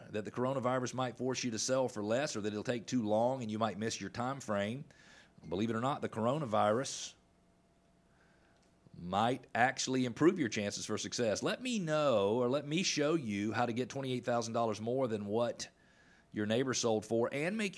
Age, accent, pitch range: 40-59, American, 105-130 Hz